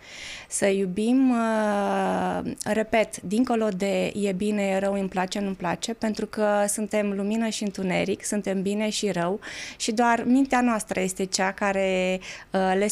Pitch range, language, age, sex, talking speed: 195-230 Hz, Romanian, 20-39, female, 145 wpm